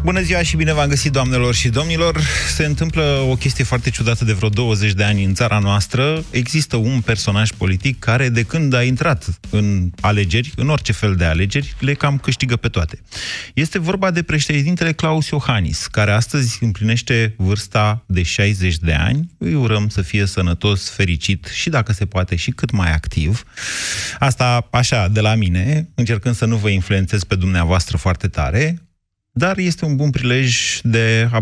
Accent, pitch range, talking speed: native, 95-125 Hz, 180 wpm